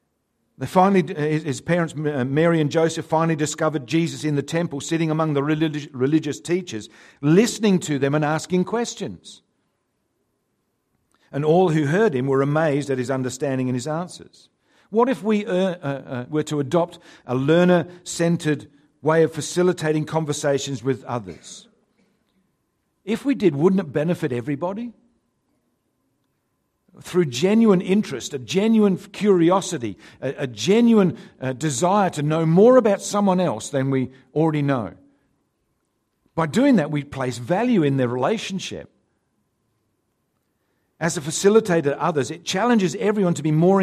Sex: male